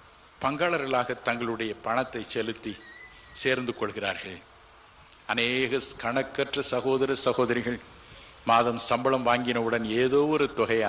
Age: 60-79